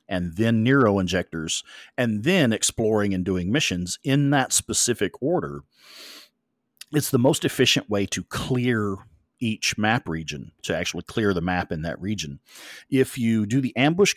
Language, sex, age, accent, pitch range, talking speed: English, male, 40-59, American, 95-130 Hz, 155 wpm